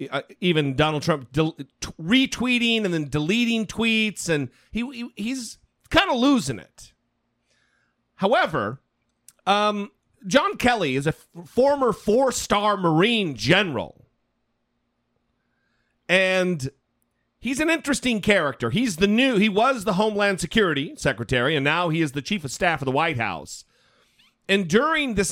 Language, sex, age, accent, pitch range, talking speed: English, male, 40-59, American, 145-220 Hz, 140 wpm